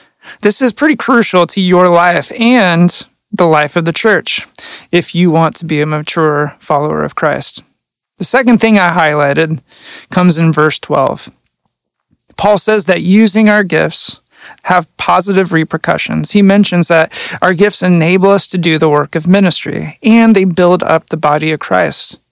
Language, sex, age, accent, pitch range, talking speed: English, male, 30-49, American, 160-200 Hz, 165 wpm